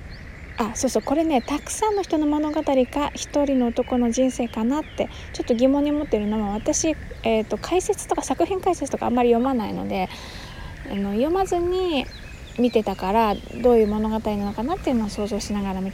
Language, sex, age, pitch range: Japanese, female, 20-39, 205-265 Hz